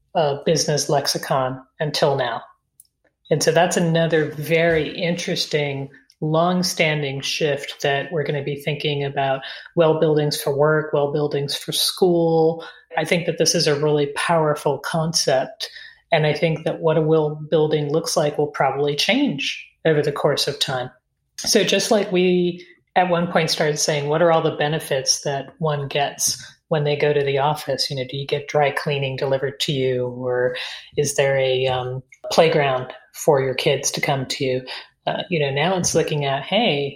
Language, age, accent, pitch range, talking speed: English, 30-49, American, 140-170 Hz, 175 wpm